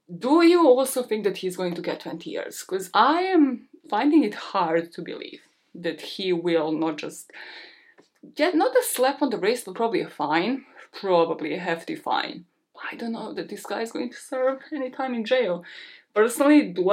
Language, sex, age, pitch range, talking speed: English, female, 20-39, 190-290 Hz, 195 wpm